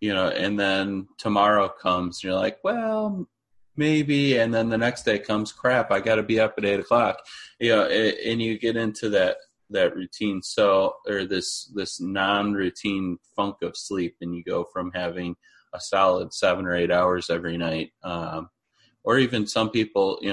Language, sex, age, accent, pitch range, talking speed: English, male, 30-49, American, 90-110 Hz, 185 wpm